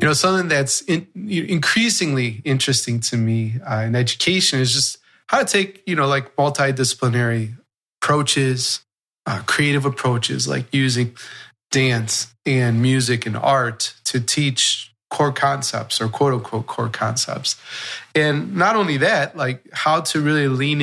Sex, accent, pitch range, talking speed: male, American, 115-140 Hz, 145 wpm